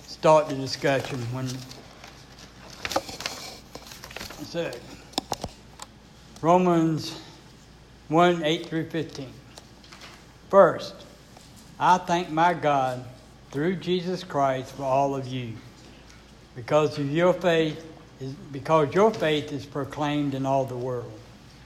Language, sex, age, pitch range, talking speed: English, male, 60-79, 130-160 Hz, 95 wpm